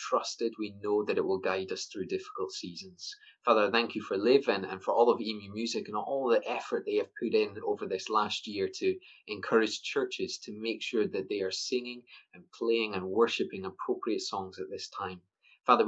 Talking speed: 210 wpm